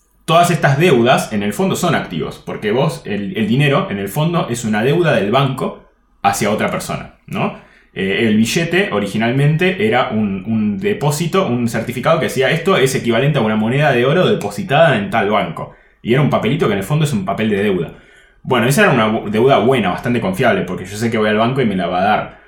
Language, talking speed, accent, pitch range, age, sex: Spanish, 220 wpm, Argentinian, 120-180 Hz, 20-39, male